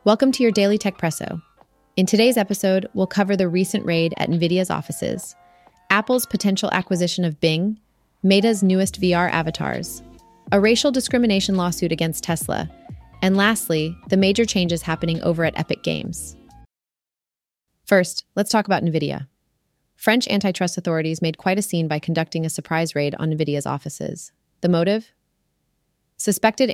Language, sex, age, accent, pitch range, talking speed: English, female, 30-49, American, 155-195 Hz, 145 wpm